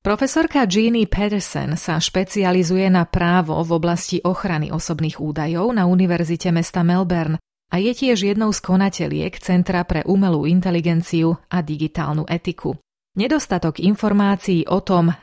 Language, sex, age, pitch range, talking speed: Slovak, female, 30-49, 165-195 Hz, 130 wpm